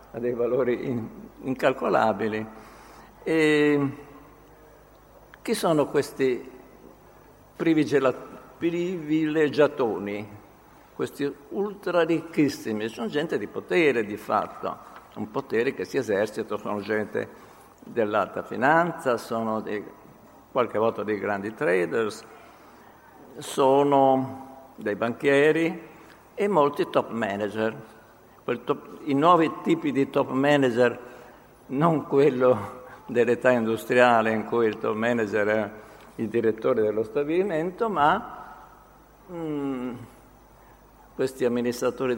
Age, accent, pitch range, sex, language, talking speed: 60-79, native, 110-145 Hz, male, Italian, 85 wpm